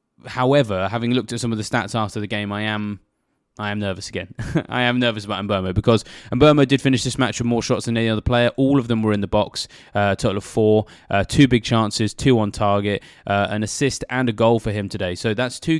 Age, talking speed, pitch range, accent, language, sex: 20-39, 250 wpm, 100-115 Hz, British, English, male